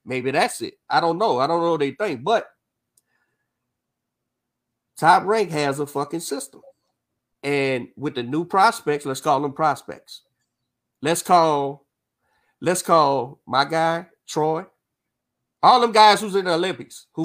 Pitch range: 135-195 Hz